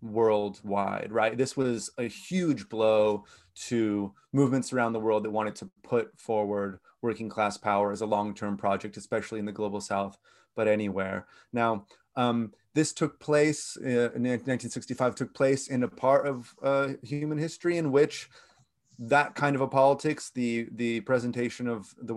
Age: 30-49